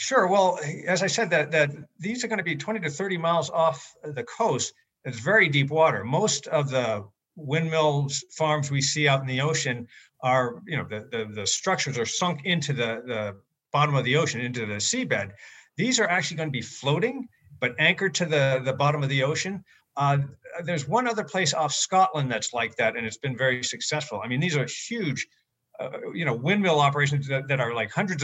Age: 50-69